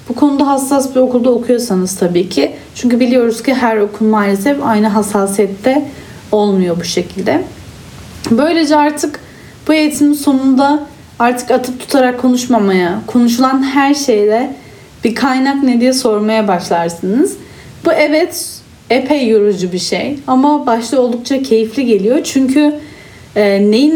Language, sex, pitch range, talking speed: Turkish, female, 210-285 Hz, 125 wpm